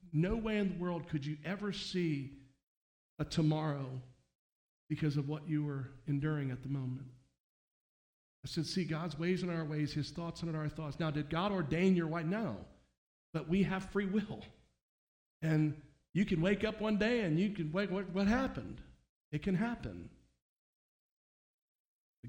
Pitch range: 145-185 Hz